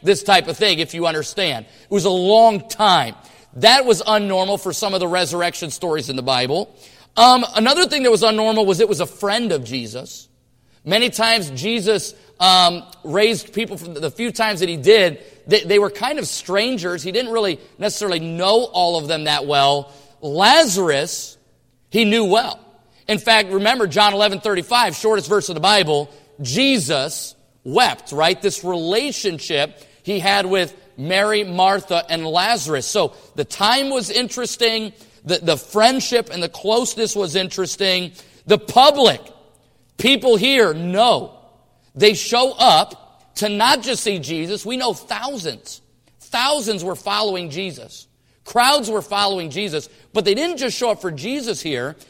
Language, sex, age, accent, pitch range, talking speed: English, male, 30-49, American, 170-220 Hz, 160 wpm